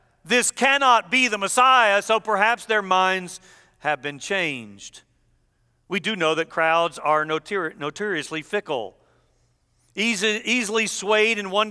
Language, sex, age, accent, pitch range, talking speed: English, male, 50-69, American, 150-225 Hz, 125 wpm